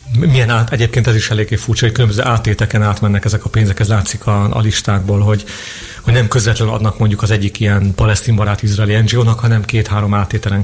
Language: Hungarian